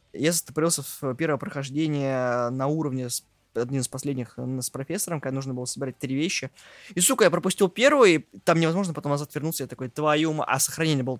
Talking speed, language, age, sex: 195 wpm, Russian, 20-39, male